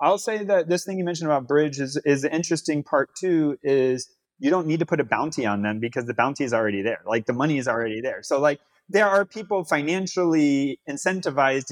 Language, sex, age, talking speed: English, male, 30-49, 225 wpm